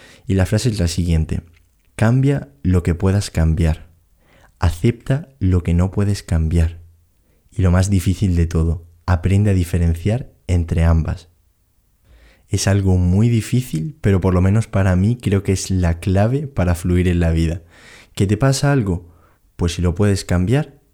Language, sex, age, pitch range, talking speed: Spanish, male, 20-39, 85-100 Hz, 165 wpm